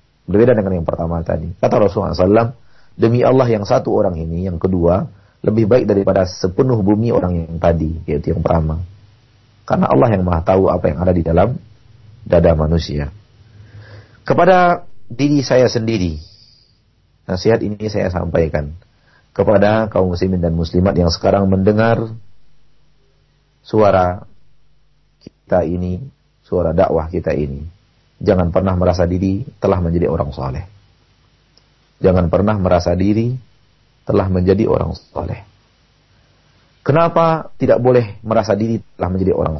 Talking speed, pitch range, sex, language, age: 130 wpm, 90-115 Hz, male, Malay, 40-59